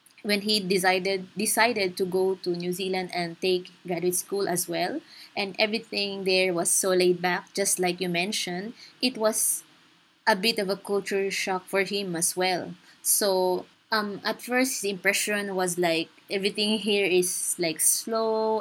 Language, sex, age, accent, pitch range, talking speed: English, female, 20-39, Filipino, 185-220 Hz, 165 wpm